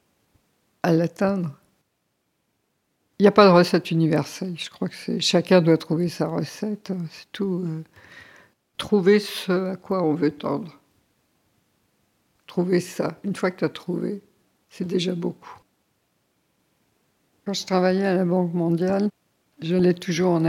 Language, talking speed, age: French, 145 wpm, 50-69